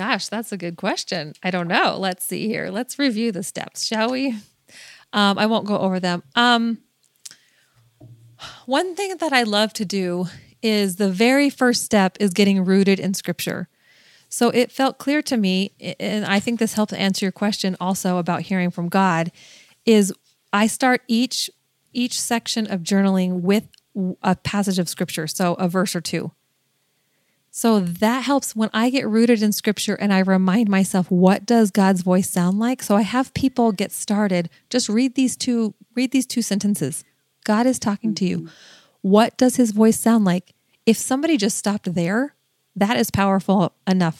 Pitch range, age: 185-230 Hz, 30-49